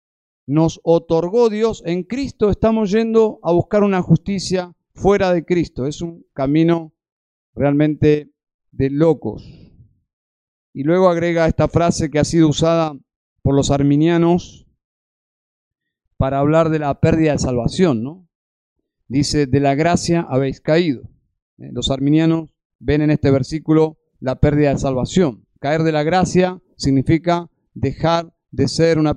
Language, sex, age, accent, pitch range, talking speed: Spanish, male, 50-69, Argentinian, 150-180 Hz, 135 wpm